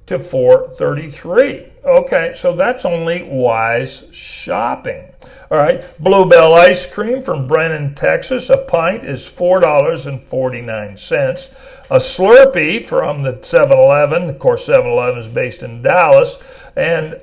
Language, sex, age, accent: English, male, 60-79, American